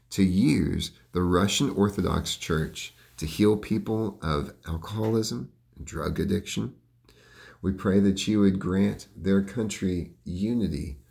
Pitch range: 85-105 Hz